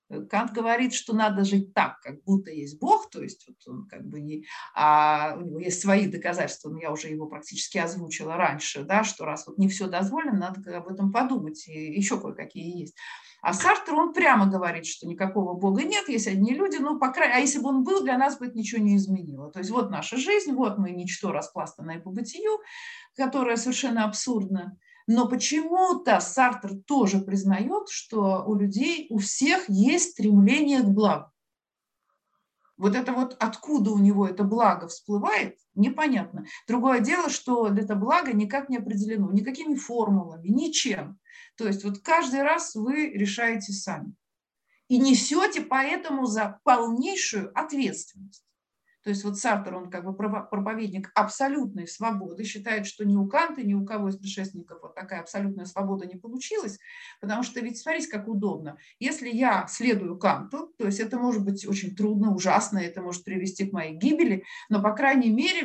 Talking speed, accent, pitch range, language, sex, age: 175 wpm, native, 195-260 Hz, Russian, female, 50-69